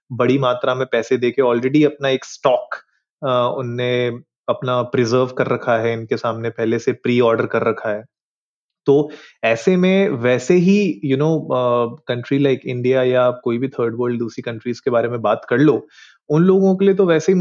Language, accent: Hindi, native